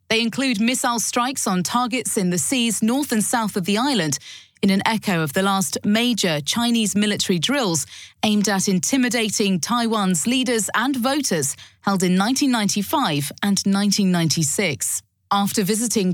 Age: 30-49